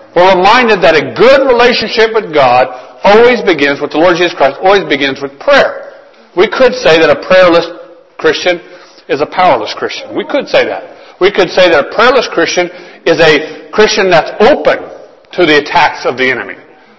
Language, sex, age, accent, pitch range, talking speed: English, male, 50-69, American, 140-195 Hz, 185 wpm